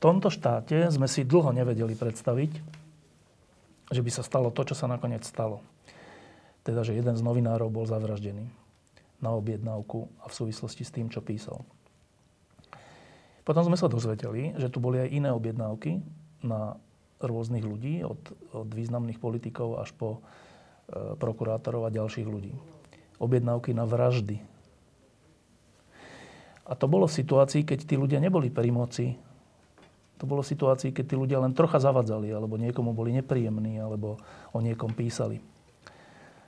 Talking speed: 145 wpm